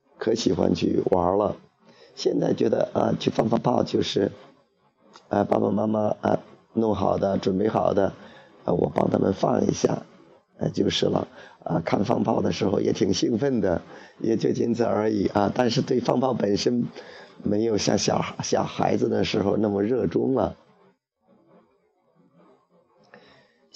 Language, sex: Chinese, male